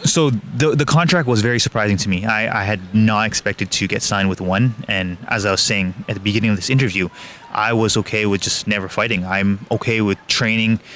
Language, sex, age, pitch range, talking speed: English, male, 20-39, 100-115 Hz, 225 wpm